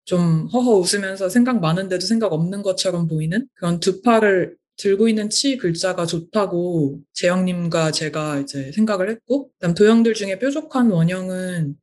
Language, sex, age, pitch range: Korean, female, 20-39, 165-215 Hz